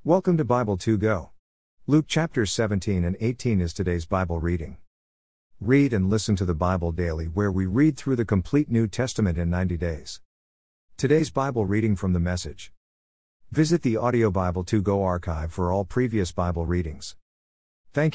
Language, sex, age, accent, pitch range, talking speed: English, male, 50-69, American, 80-120 Hz, 170 wpm